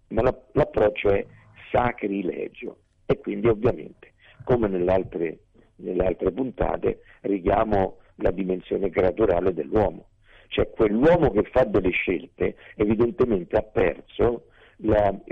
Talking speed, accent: 100 wpm, native